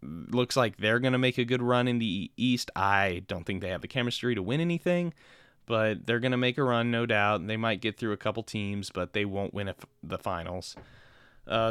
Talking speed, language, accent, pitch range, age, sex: 235 wpm, English, American, 105-145 Hz, 20-39, male